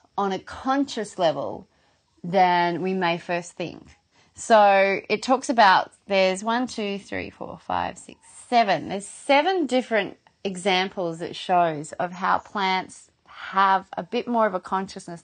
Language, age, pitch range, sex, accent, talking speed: English, 30-49, 185-235 Hz, female, Australian, 145 wpm